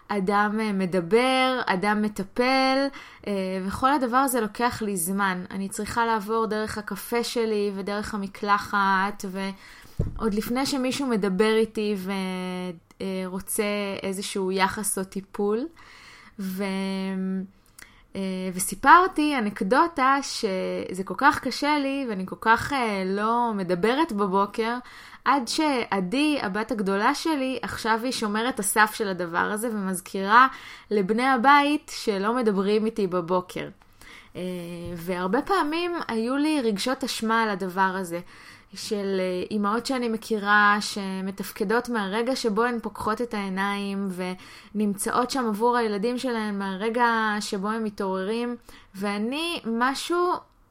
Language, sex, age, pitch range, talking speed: Hebrew, female, 20-39, 195-245 Hz, 110 wpm